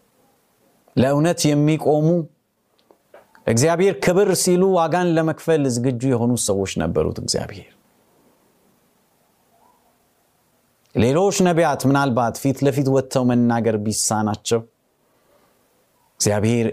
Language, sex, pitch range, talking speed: Amharic, male, 110-160 Hz, 75 wpm